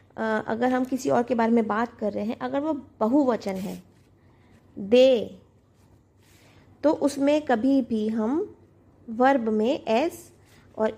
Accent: native